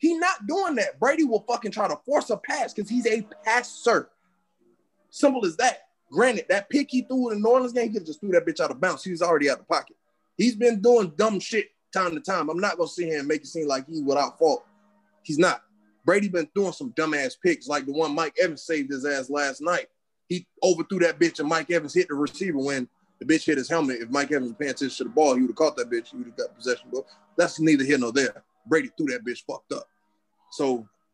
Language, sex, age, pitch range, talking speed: English, male, 20-39, 155-255 Hz, 250 wpm